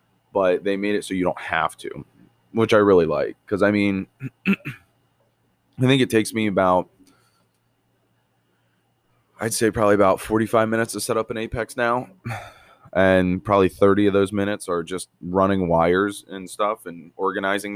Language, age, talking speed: English, 20-39, 160 wpm